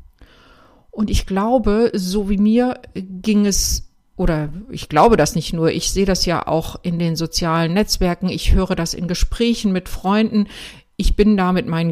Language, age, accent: German, 60-79, German